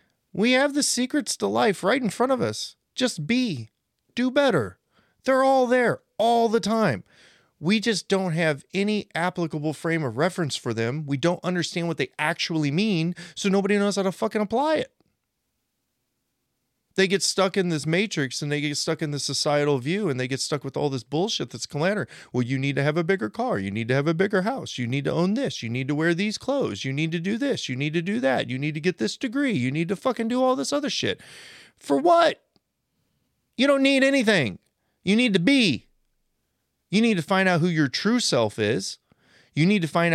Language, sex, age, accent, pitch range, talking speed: English, male, 30-49, American, 145-225 Hz, 220 wpm